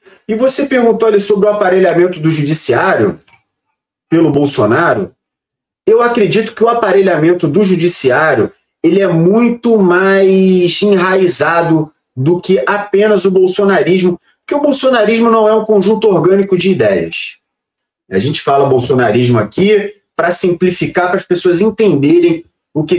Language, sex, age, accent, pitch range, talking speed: Portuguese, male, 30-49, Brazilian, 170-215 Hz, 130 wpm